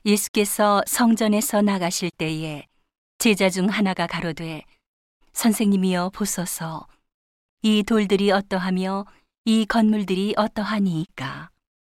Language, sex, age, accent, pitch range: Korean, female, 40-59, native, 175-210 Hz